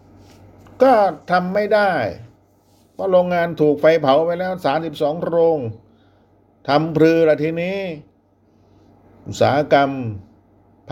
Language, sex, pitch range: Thai, male, 105-170 Hz